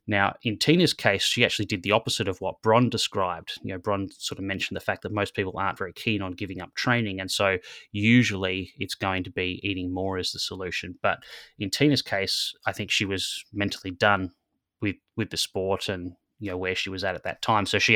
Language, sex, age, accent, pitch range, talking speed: English, male, 20-39, Australian, 95-110 Hz, 230 wpm